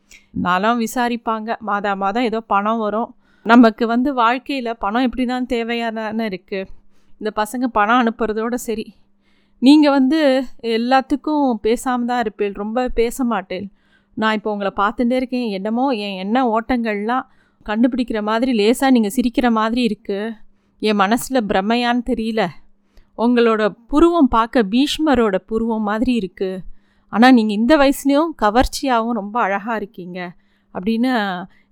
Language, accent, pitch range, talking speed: Tamil, native, 210-255 Hz, 115 wpm